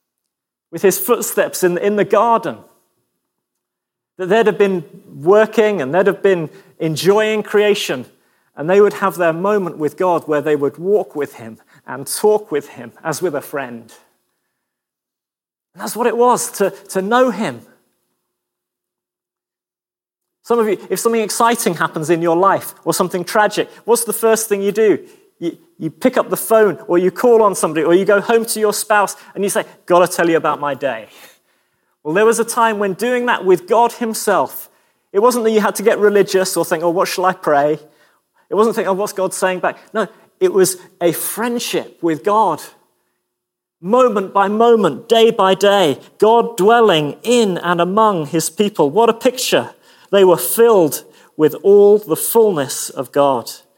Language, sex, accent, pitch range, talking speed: English, male, British, 170-220 Hz, 180 wpm